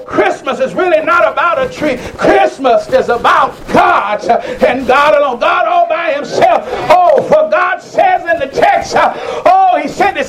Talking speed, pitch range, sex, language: 170 wpm, 275-350 Hz, male, English